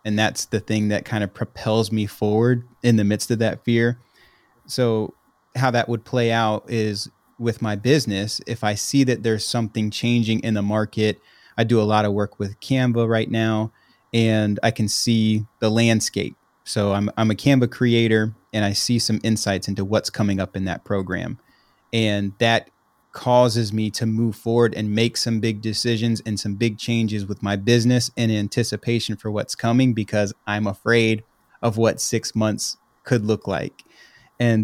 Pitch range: 105-120 Hz